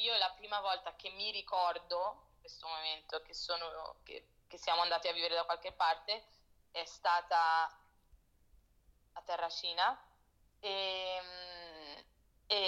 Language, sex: Italian, female